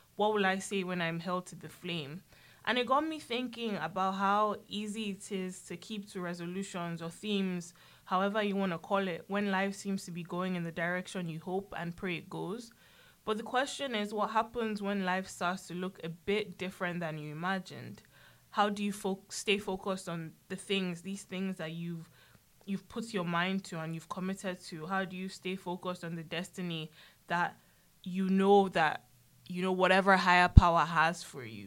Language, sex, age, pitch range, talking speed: English, female, 20-39, 175-200 Hz, 200 wpm